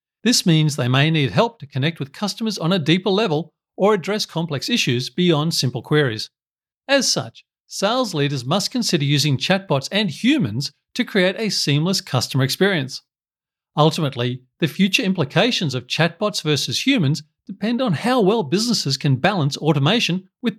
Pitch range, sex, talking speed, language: 135-195 Hz, male, 155 wpm, English